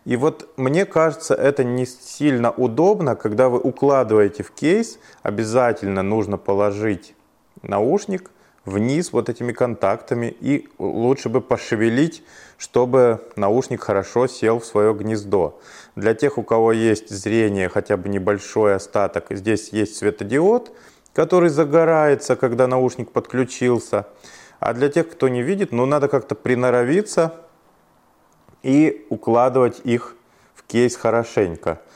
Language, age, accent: Russian, 20-39, native